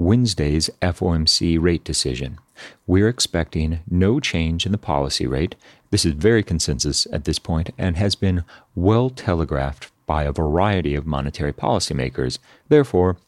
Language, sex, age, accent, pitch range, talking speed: English, male, 40-59, American, 80-105 Hz, 140 wpm